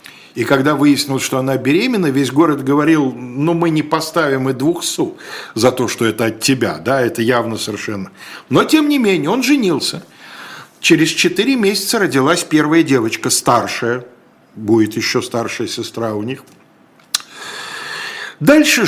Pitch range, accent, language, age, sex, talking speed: 115-185 Hz, native, Russian, 50-69, male, 145 wpm